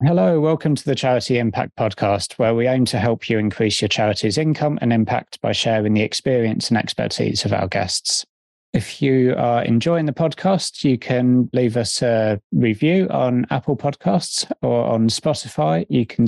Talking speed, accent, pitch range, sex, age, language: 175 wpm, British, 105-130 Hz, male, 20-39, English